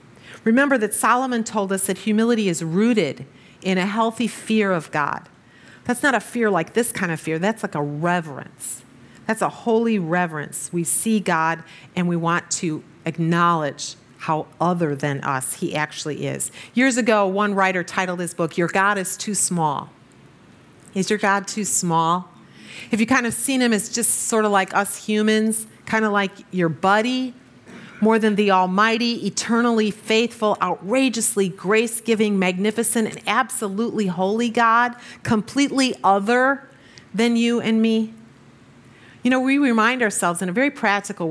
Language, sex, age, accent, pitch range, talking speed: English, female, 40-59, American, 170-225 Hz, 160 wpm